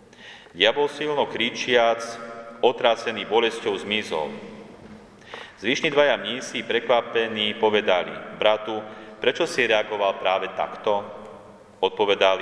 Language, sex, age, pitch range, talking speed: Slovak, male, 40-59, 100-115 Hz, 90 wpm